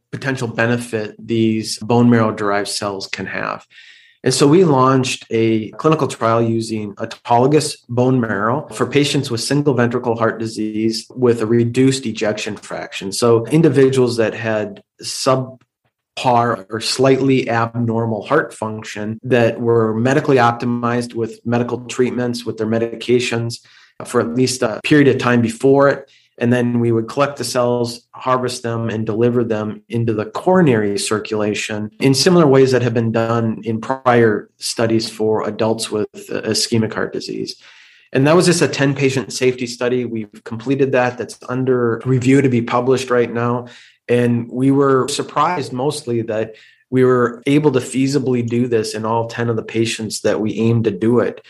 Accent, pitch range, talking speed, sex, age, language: American, 115-130 Hz, 160 wpm, male, 30-49, English